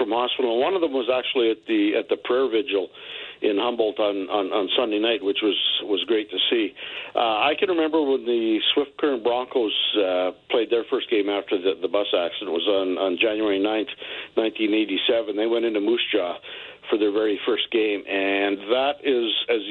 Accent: American